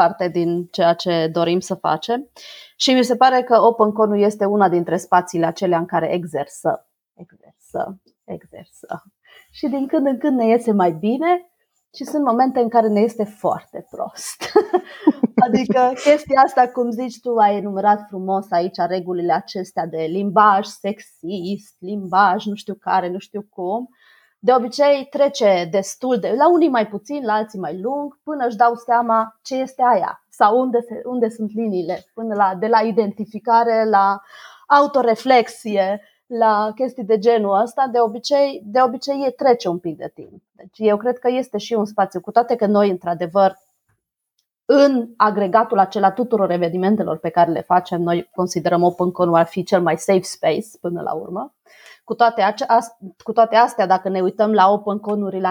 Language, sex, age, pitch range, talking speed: Romanian, female, 30-49, 185-240 Hz, 165 wpm